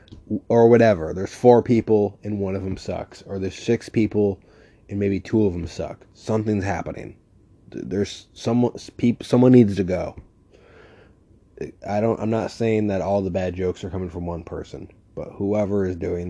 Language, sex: English, male